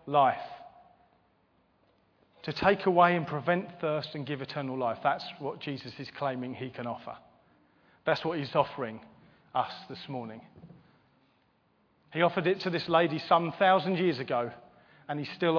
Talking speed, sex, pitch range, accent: 150 wpm, male, 130-175 Hz, British